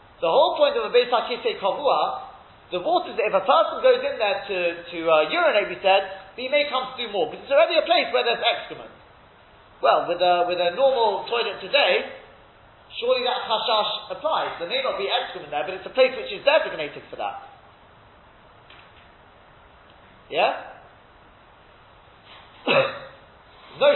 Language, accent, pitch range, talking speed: English, British, 195-305 Hz, 165 wpm